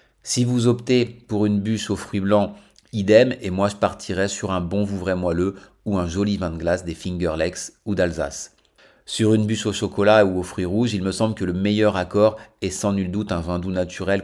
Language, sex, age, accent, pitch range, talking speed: French, male, 40-59, French, 90-105 Hz, 230 wpm